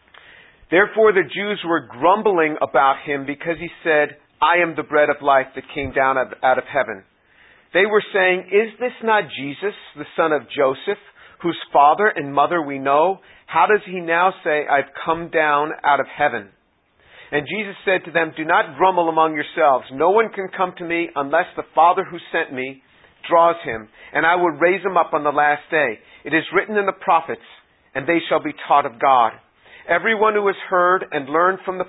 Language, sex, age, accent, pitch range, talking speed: English, male, 50-69, American, 150-185 Hz, 200 wpm